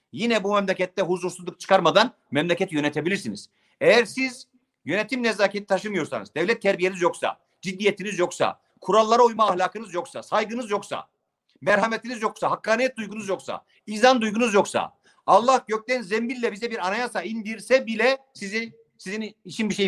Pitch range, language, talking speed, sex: 175-220 Hz, Turkish, 135 wpm, male